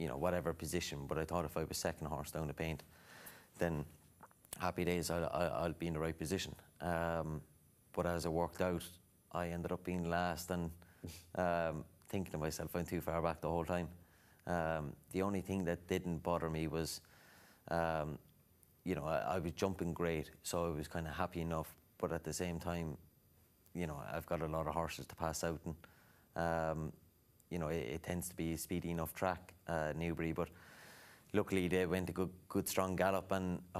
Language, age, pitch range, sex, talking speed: English, 30-49, 80-90 Hz, male, 200 wpm